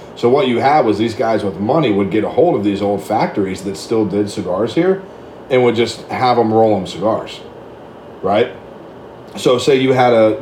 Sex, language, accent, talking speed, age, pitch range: male, English, American, 215 wpm, 30-49, 100-115 Hz